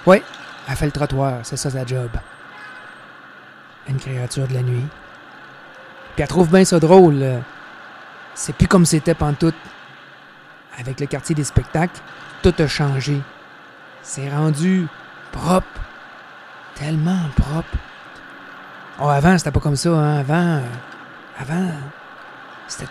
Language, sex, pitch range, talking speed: French, male, 130-160 Hz, 130 wpm